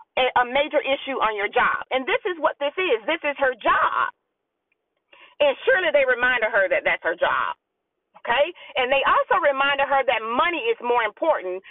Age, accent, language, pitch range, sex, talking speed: 40-59, American, English, 265-395 Hz, female, 185 wpm